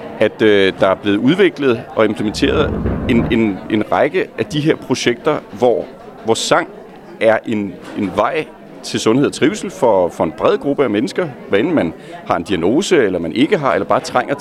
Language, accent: Danish, native